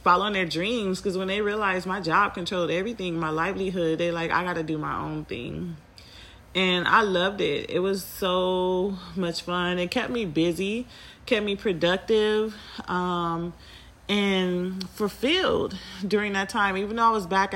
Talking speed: 165 wpm